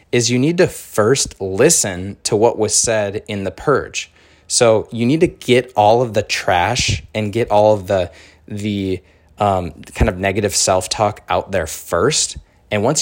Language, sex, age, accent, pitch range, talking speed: English, male, 20-39, American, 95-120 Hz, 175 wpm